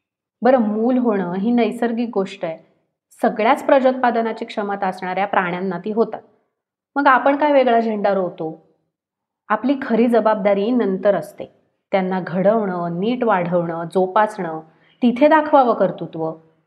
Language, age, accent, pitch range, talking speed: Marathi, 30-49, native, 180-230 Hz, 120 wpm